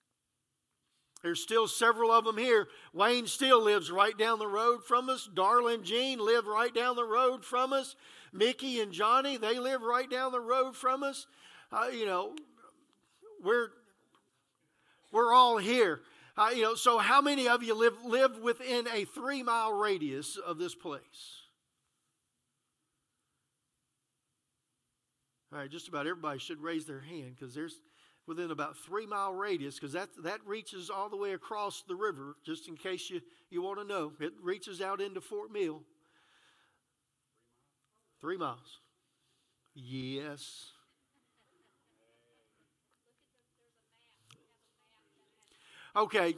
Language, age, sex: English, 50-69, male